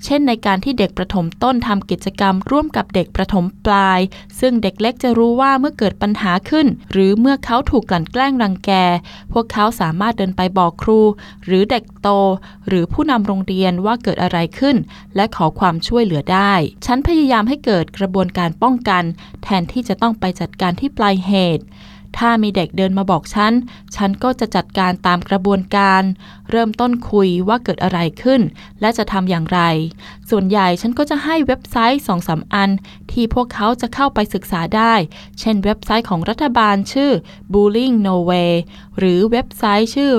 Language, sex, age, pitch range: Thai, female, 20-39, 185-235 Hz